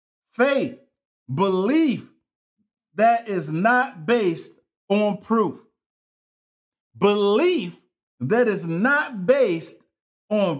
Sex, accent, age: male, American, 50-69